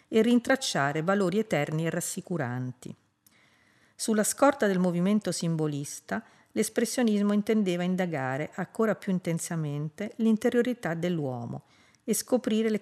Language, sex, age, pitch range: Italian, female, 50-69, 155-215 Hz